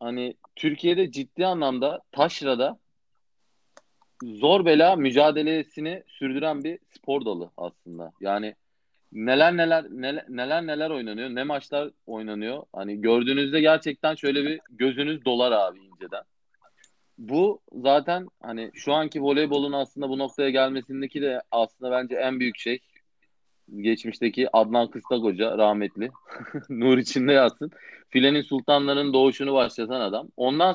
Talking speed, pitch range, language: 120 wpm, 120-145 Hz, Turkish